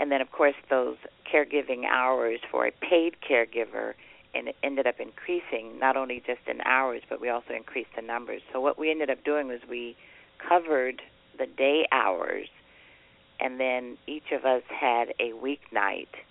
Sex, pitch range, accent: female, 115-135 Hz, American